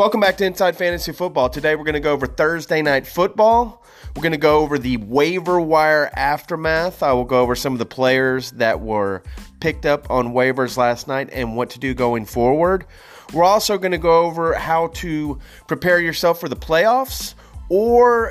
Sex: male